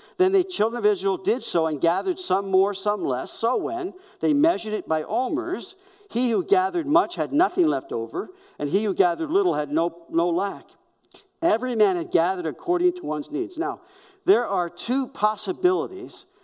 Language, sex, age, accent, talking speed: English, male, 50-69, American, 185 wpm